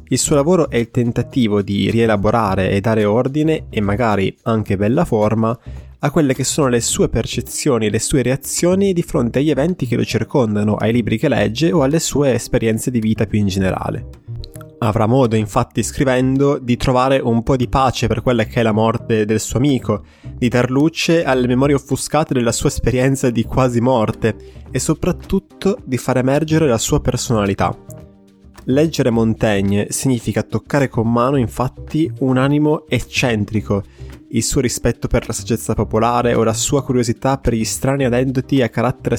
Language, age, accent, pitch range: Italian, 20-39, native, 110-140 Hz